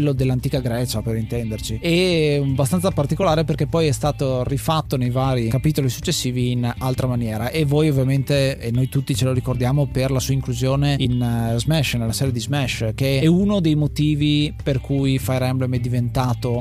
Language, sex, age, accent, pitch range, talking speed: Italian, male, 20-39, native, 125-155 Hz, 175 wpm